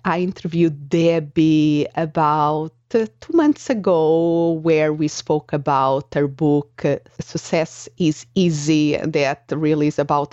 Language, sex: English, female